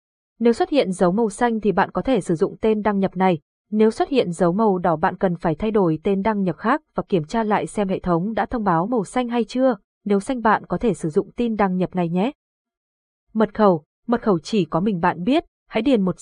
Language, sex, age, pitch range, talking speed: Vietnamese, female, 20-39, 180-230 Hz, 255 wpm